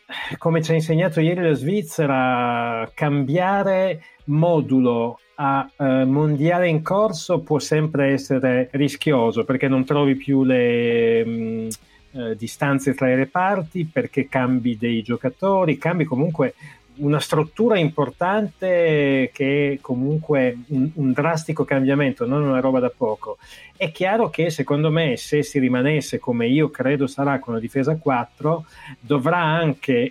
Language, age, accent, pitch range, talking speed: Italian, 30-49, native, 125-155 Hz, 135 wpm